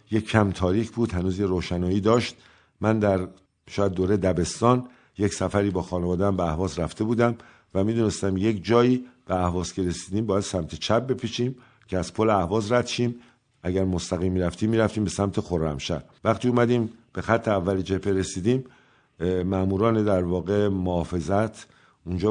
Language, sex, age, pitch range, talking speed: Persian, male, 50-69, 95-115 Hz, 155 wpm